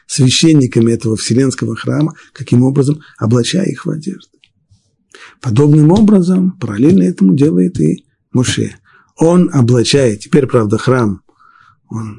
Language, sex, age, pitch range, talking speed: Russian, male, 50-69, 115-160 Hz, 115 wpm